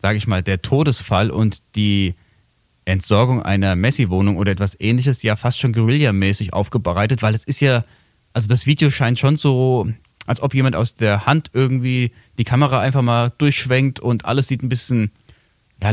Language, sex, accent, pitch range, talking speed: German, male, German, 105-130 Hz, 175 wpm